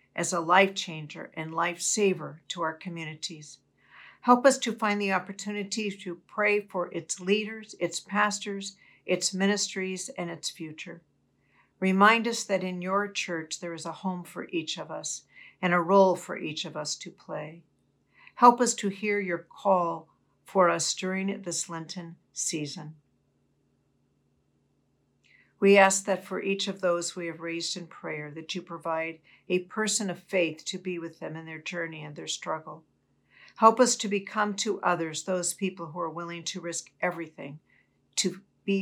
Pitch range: 160-195 Hz